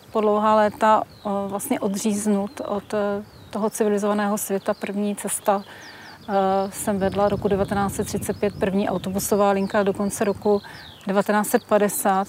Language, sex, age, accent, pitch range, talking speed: Czech, female, 30-49, native, 200-215 Hz, 105 wpm